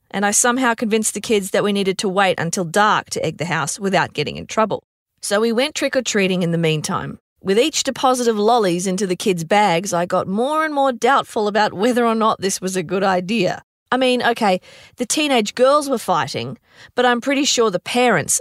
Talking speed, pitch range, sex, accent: 215 wpm, 175-245 Hz, female, Australian